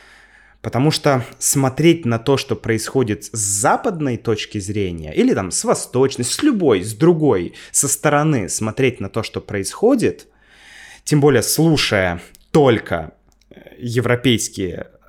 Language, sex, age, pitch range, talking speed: Russian, male, 20-39, 110-145 Hz, 125 wpm